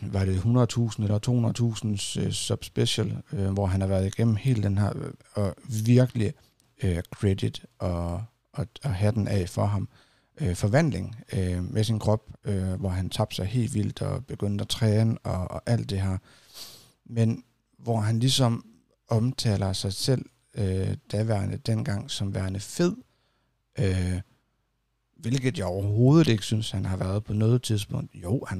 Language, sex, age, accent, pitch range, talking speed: Danish, male, 60-79, native, 100-125 Hz, 160 wpm